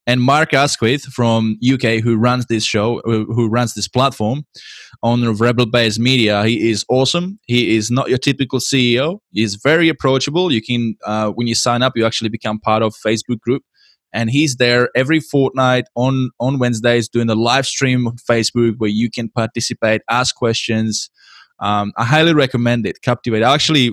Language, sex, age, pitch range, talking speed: English, male, 20-39, 110-130 Hz, 180 wpm